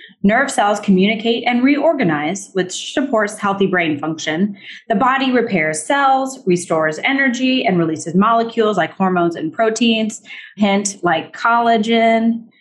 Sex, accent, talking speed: female, American, 125 wpm